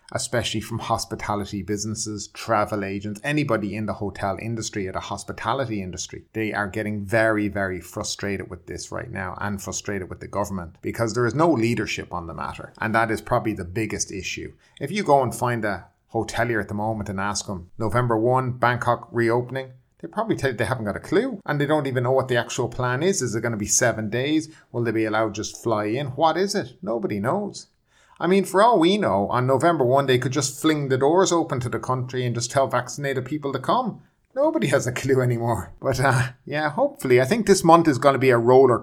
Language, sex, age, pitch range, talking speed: English, male, 30-49, 100-130 Hz, 225 wpm